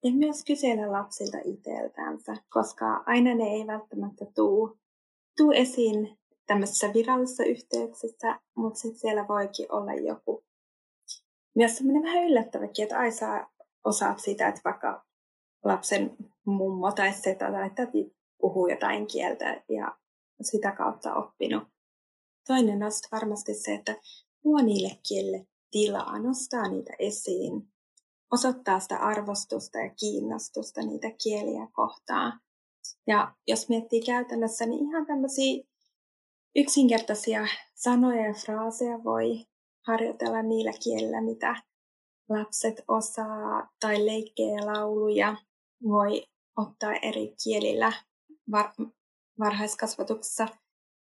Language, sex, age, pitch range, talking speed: Finnish, female, 20-39, 200-240 Hz, 110 wpm